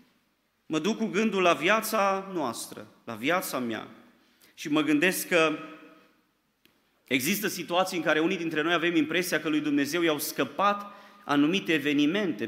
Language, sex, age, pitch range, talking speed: Romanian, male, 30-49, 155-215 Hz, 145 wpm